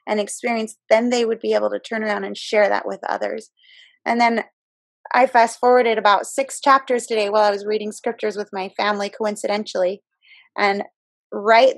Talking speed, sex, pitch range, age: 180 wpm, female, 205-245 Hz, 20-39